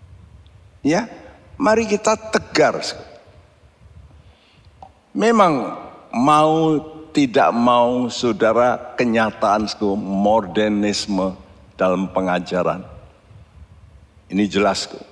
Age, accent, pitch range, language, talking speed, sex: 60-79, native, 95-155 Hz, Indonesian, 65 wpm, male